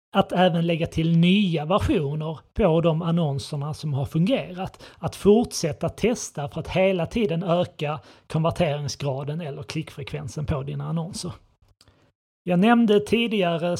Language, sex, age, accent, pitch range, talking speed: Swedish, male, 30-49, native, 150-185 Hz, 125 wpm